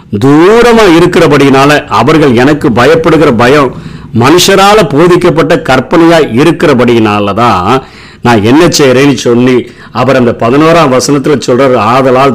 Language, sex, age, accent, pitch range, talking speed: Tamil, male, 50-69, native, 130-170 Hz, 95 wpm